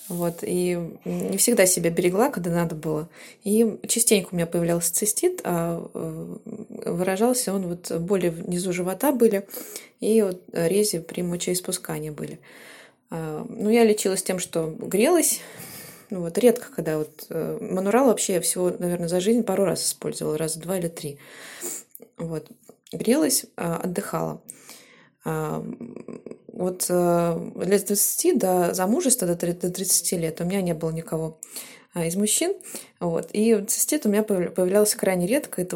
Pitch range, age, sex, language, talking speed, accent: 170-220 Hz, 20-39, female, Russian, 135 wpm, native